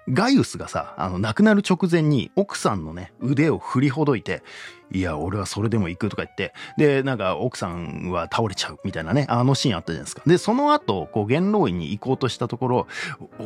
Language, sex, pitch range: Japanese, male, 105-165 Hz